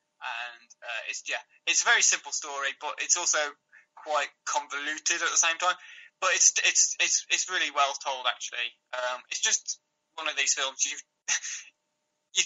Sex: male